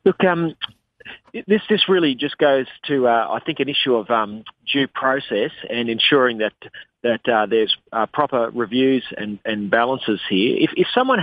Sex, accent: male, Australian